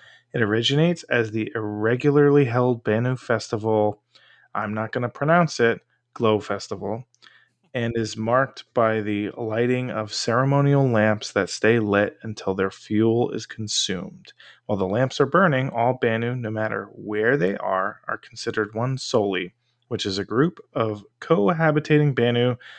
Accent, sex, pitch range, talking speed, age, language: American, male, 110-130 Hz, 145 wpm, 20-39, English